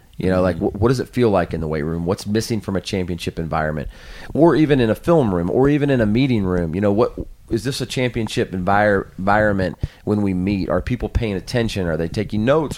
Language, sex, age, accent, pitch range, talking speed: English, male, 30-49, American, 90-115 Hz, 235 wpm